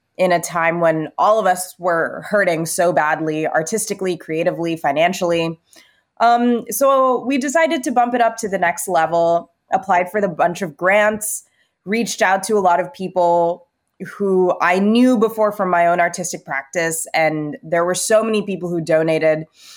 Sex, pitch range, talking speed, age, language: female, 160-205 Hz, 170 wpm, 20-39, English